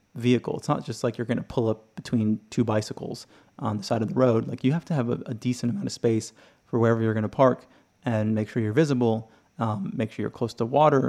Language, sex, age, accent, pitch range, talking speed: English, male, 30-49, American, 115-130 Hz, 260 wpm